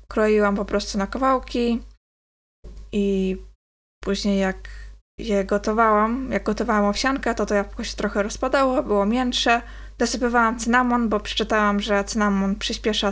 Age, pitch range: 20-39, 205-240 Hz